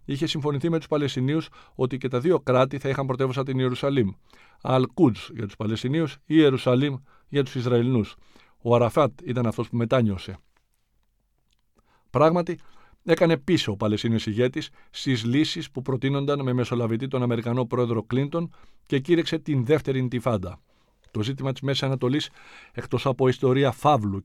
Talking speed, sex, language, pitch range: 150 wpm, male, Greek, 115-145 Hz